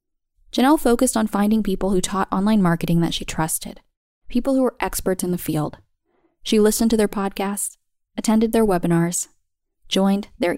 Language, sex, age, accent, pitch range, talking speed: English, female, 10-29, American, 170-235 Hz, 165 wpm